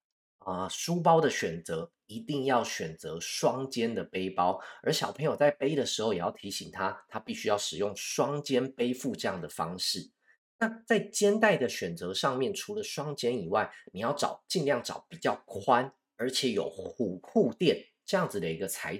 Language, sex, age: Chinese, male, 30-49